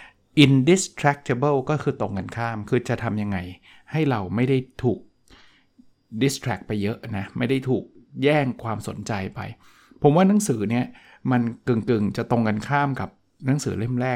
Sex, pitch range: male, 110-135 Hz